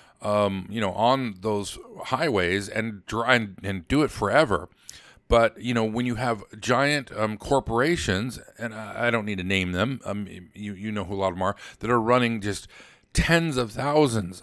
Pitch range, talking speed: 95-120 Hz, 190 wpm